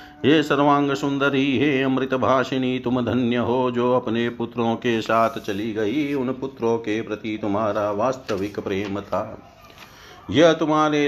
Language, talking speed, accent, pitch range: Hindi, 135 wpm, native, 110-140 Hz